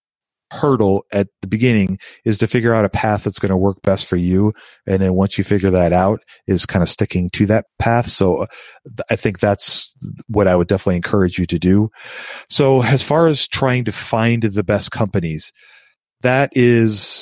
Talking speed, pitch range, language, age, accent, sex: 190 wpm, 100-115 Hz, English, 40-59, American, male